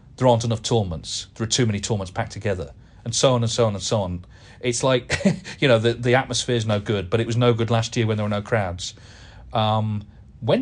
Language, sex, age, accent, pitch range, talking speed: English, male, 40-59, British, 110-140 Hz, 245 wpm